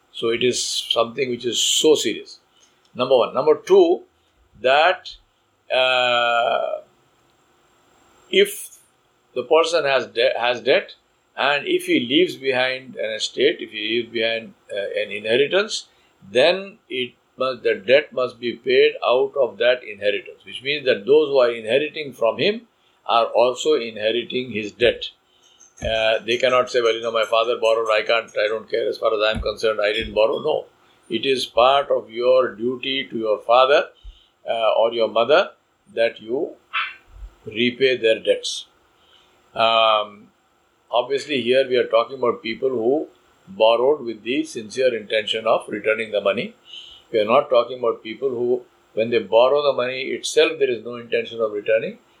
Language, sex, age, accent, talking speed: English, male, 50-69, Indian, 160 wpm